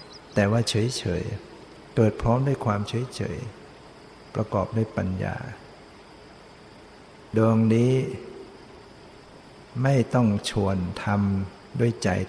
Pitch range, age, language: 100-115 Hz, 60-79, Thai